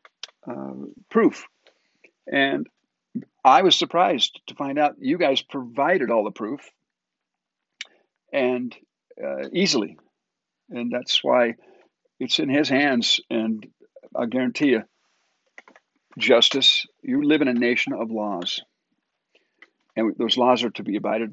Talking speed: 125 wpm